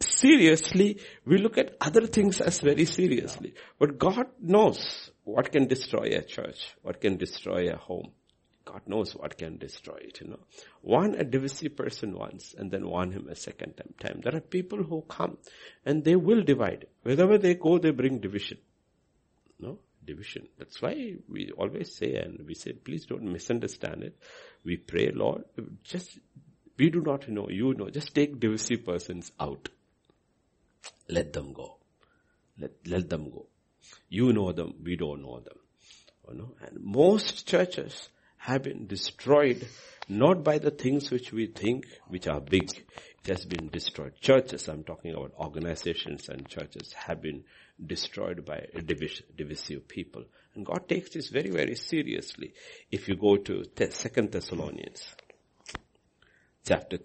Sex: male